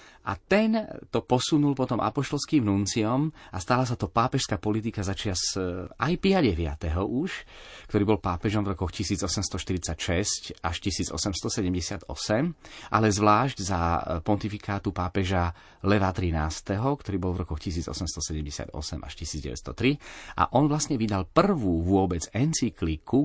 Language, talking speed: Slovak, 115 wpm